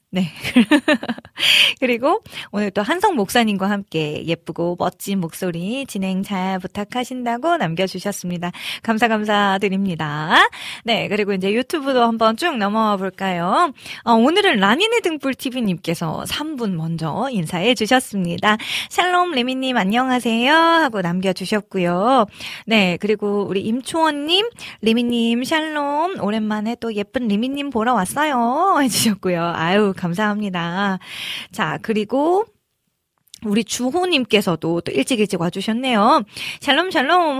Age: 20-39